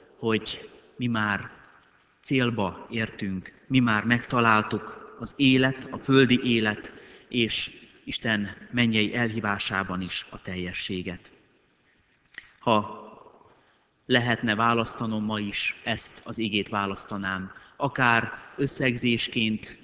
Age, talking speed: 30-49, 95 wpm